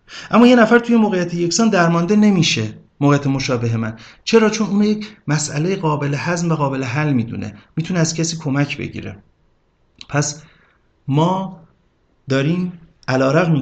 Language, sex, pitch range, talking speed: Persian, male, 120-165 Hz, 135 wpm